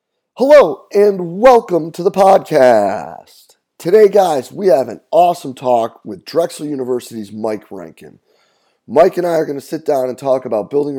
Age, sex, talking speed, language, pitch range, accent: 30-49, male, 165 wpm, English, 115-150 Hz, American